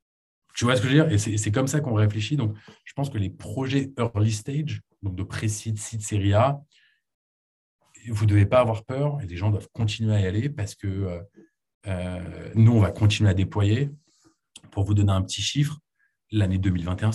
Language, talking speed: French, 210 wpm